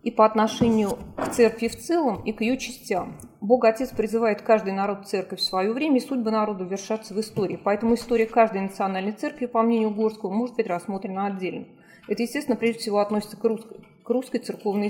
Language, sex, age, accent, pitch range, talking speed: Russian, female, 30-49, native, 195-230 Hz, 195 wpm